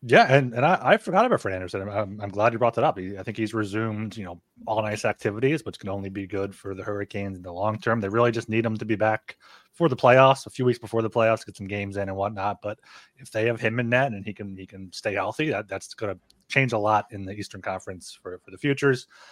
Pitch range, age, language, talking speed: 105-135 Hz, 30-49, English, 280 wpm